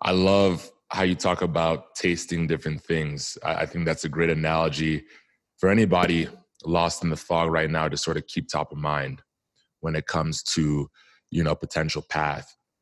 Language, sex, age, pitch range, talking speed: English, male, 20-39, 80-90 Hz, 180 wpm